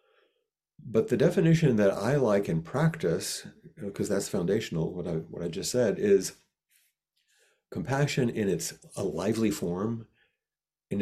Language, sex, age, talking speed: English, male, 50-69, 135 wpm